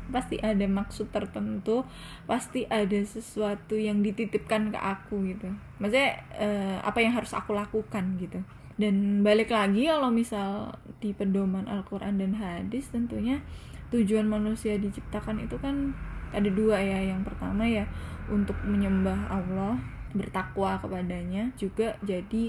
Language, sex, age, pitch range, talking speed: Indonesian, female, 10-29, 195-225 Hz, 130 wpm